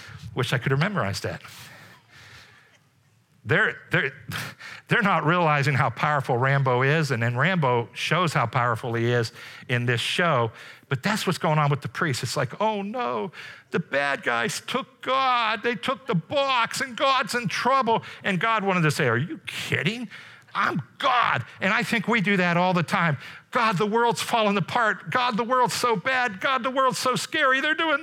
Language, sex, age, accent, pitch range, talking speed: English, male, 50-69, American, 140-220 Hz, 185 wpm